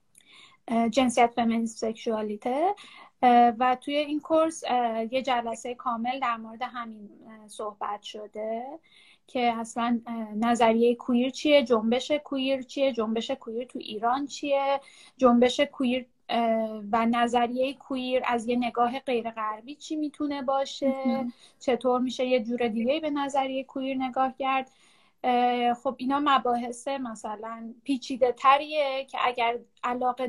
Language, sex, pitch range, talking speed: English, female, 230-265 Hz, 115 wpm